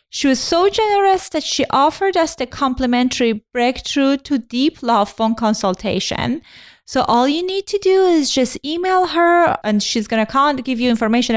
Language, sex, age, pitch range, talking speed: English, female, 20-39, 210-280 Hz, 175 wpm